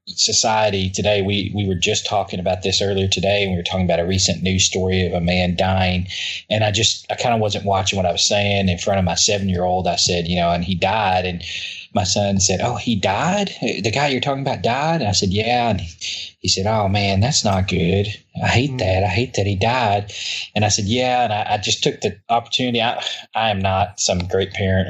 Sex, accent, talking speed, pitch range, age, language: male, American, 245 wpm, 95-110 Hz, 20-39, English